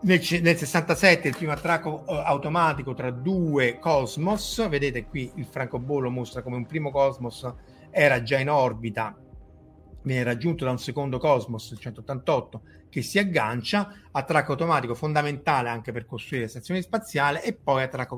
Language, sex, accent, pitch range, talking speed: Italian, male, native, 120-155 Hz, 150 wpm